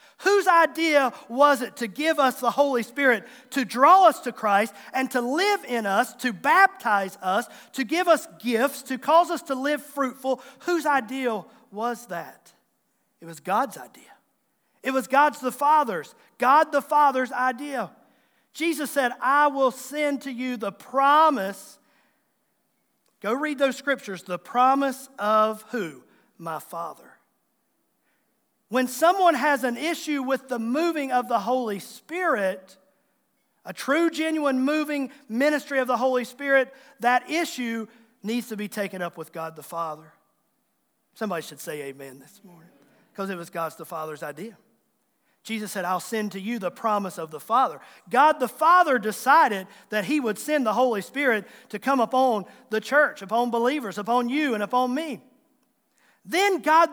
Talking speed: 160 wpm